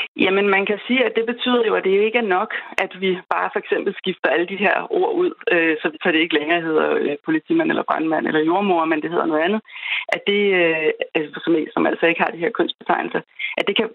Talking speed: 230 wpm